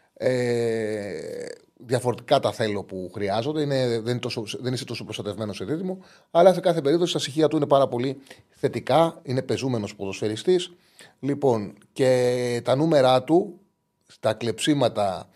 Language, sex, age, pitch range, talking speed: Greek, male, 30-49, 110-145 Hz, 145 wpm